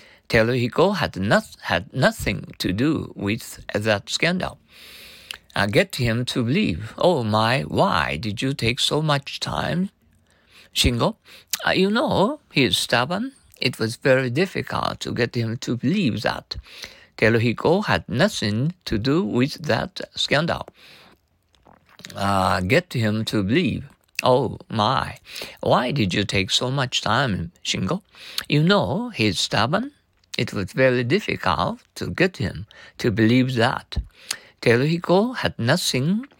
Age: 50-69